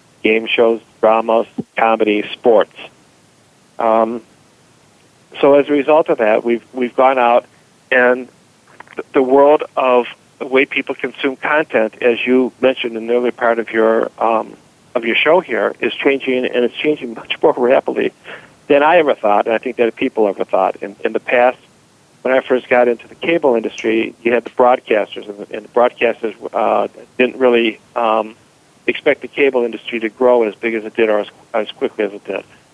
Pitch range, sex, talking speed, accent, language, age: 115-135 Hz, male, 185 wpm, American, English, 50-69